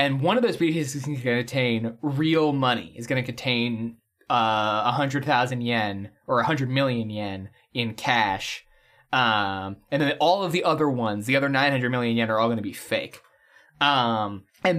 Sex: male